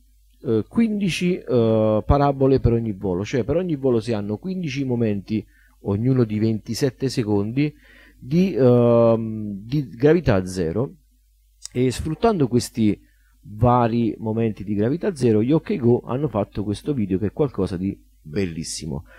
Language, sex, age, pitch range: Italian, male, 40-59, 95-120 Hz